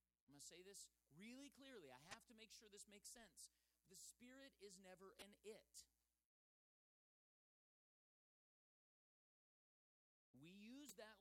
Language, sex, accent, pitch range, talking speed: English, male, American, 155-225 Hz, 130 wpm